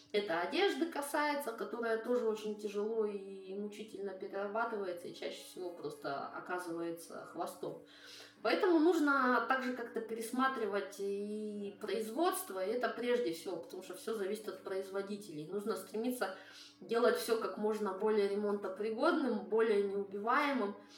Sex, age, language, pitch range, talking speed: female, 20-39, Russian, 200-245 Hz, 125 wpm